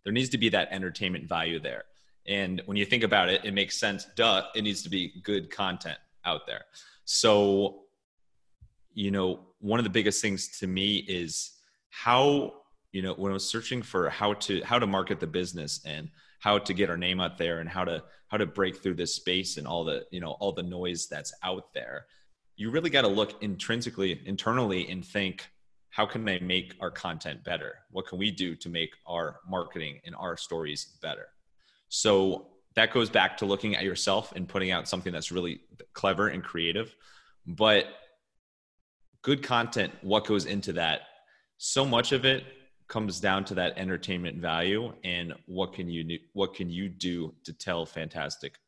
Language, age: English, 30-49